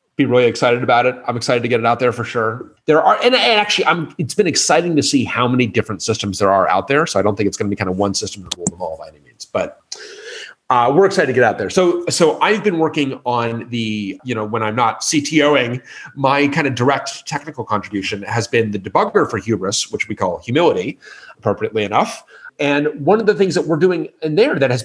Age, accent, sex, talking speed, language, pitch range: 30-49, American, male, 245 wpm, English, 115-165 Hz